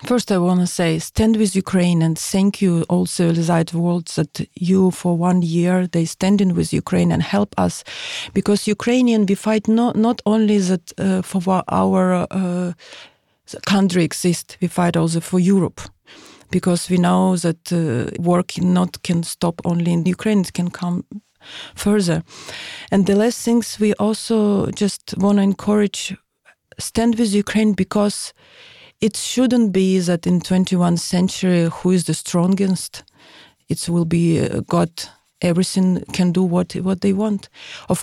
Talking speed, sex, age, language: 155 wpm, female, 40-59, English